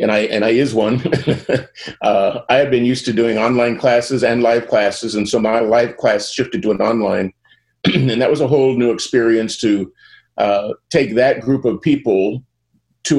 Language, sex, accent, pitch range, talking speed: English, male, American, 105-125 Hz, 190 wpm